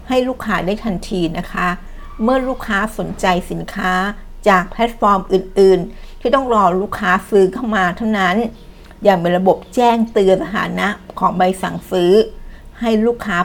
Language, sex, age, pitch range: Thai, female, 60-79, 185-220 Hz